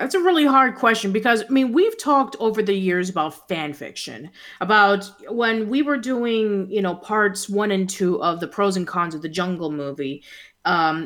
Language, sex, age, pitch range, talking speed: English, female, 30-49, 165-220 Hz, 200 wpm